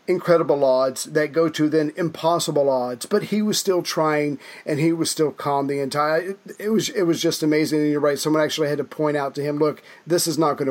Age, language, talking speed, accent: 40-59, English, 240 wpm, American